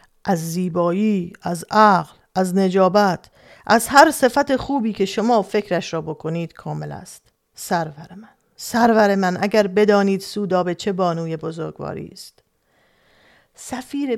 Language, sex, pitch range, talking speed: Persian, female, 180-235 Hz, 125 wpm